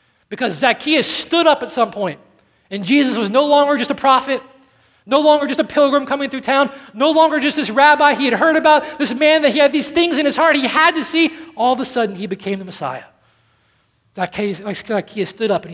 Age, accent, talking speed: 40-59, American, 225 wpm